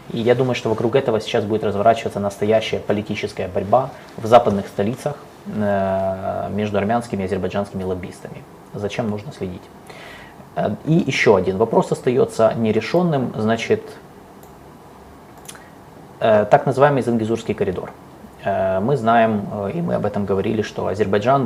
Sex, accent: male, native